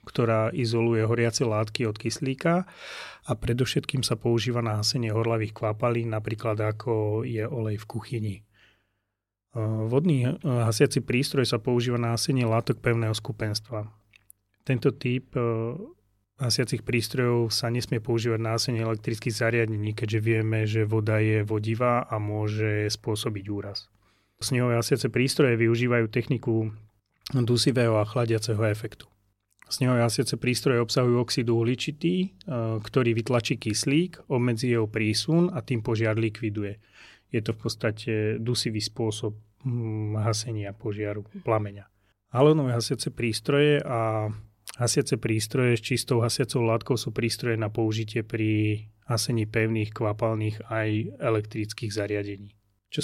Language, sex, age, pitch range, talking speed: Slovak, male, 30-49, 110-125 Hz, 120 wpm